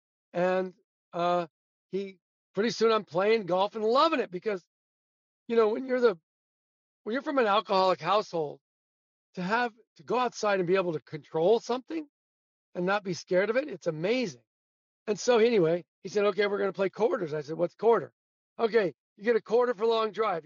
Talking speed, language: 190 wpm, English